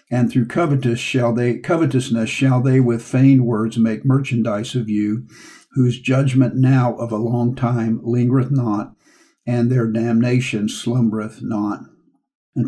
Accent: American